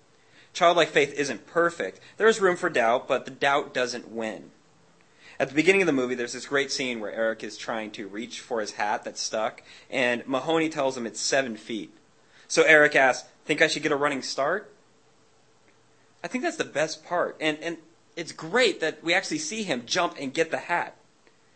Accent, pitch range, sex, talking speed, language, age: American, 130-170 Hz, male, 200 wpm, English, 30-49